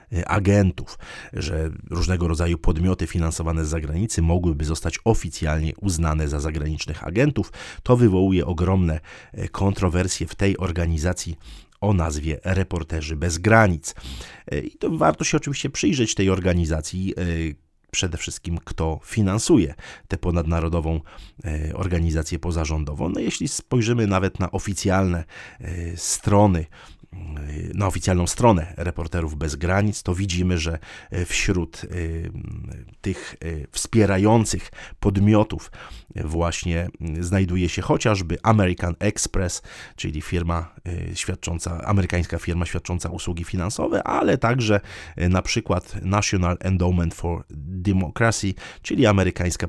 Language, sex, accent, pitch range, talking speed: Polish, male, native, 80-95 Hz, 105 wpm